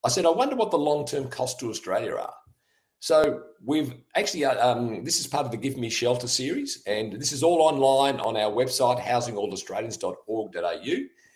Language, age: English, 50-69